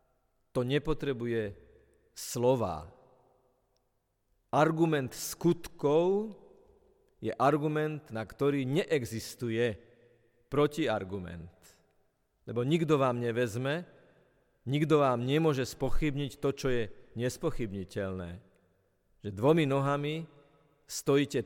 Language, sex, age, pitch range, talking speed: Slovak, male, 50-69, 125-155 Hz, 75 wpm